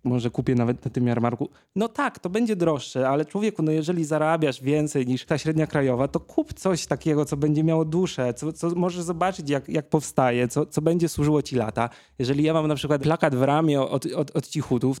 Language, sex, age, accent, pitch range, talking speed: Polish, male, 20-39, native, 130-180 Hz, 215 wpm